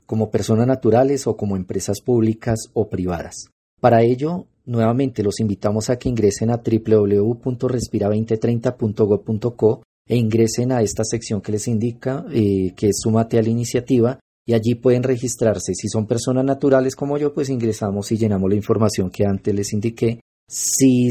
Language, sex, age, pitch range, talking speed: Spanish, male, 30-49, 105-125 Hz, 155 wpm